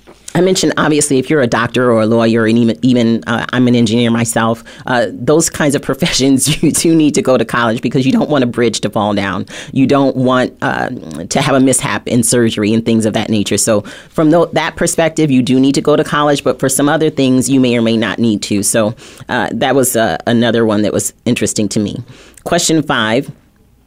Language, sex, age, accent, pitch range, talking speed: English, female, 30-49, American, 115-145 Hz, 230 wpm